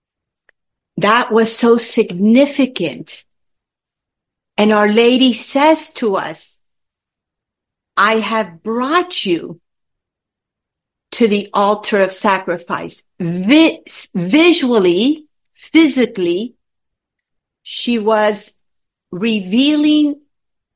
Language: English